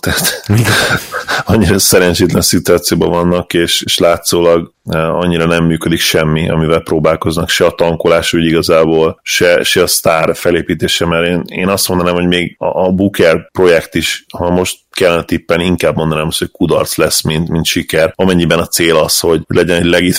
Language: Hungarian